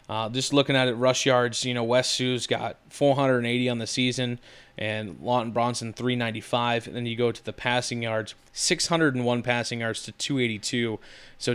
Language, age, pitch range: English, 20-39, 115-135 Hz